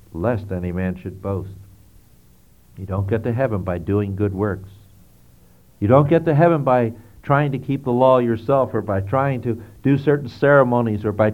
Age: 60-79